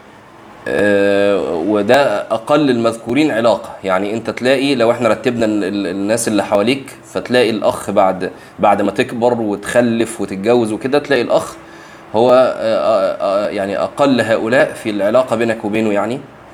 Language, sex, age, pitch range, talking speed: Arabic, male, 30-49, 100-140 Hz, 130 wpm